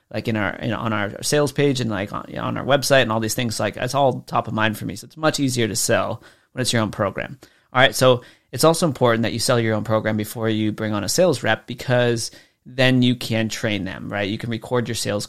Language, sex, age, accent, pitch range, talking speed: English, male, 30-49, American, 110-130 Hz, 275 wpm